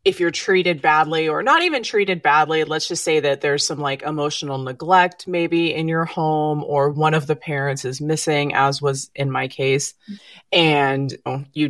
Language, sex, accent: English, female, American